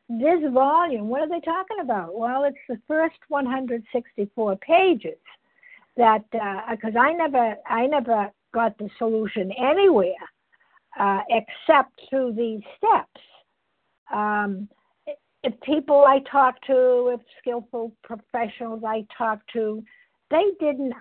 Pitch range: 235-300 Hz